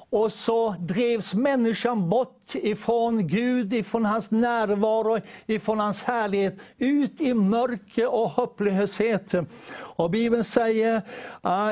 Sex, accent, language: male, native, Swedish